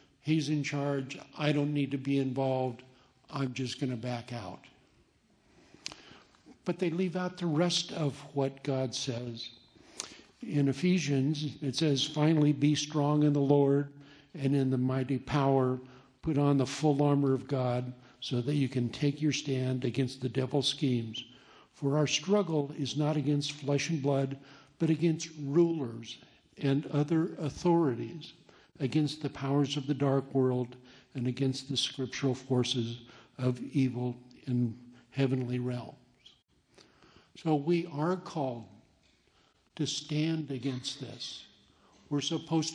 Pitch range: 130-150 Hz